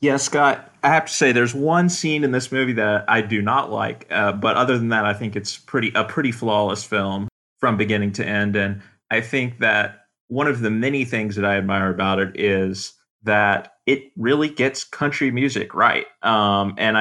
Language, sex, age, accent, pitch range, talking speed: English, male, 30-49, American, 105-130 Hz, 205 wpm